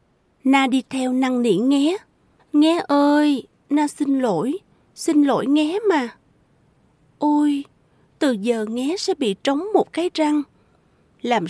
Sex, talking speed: female, 135 wpm